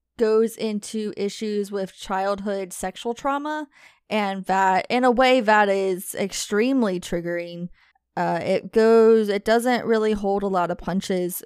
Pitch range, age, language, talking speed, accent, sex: 190-235 Hz, 10-29, English, 140 wpm, American, female